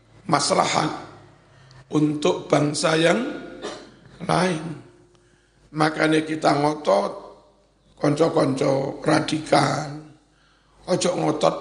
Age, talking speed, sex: 60-79, 60 wpm, male